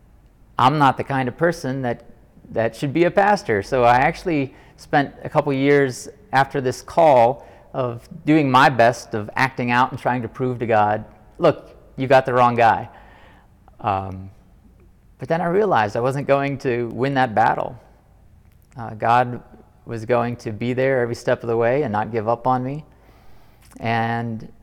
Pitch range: 110-125 Hz